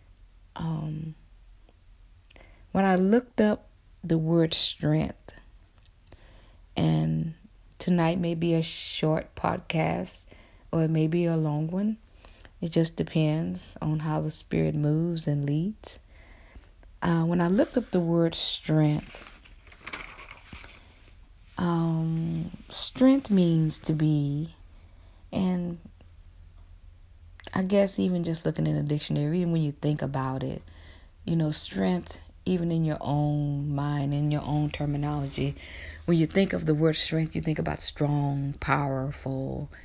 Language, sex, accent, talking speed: English, female, American, 125 wpm